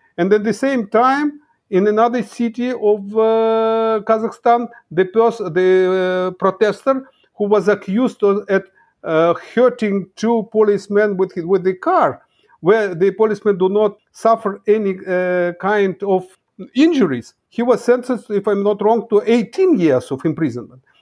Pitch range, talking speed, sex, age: 190-245 Hz, 150 wpm, male, 50-69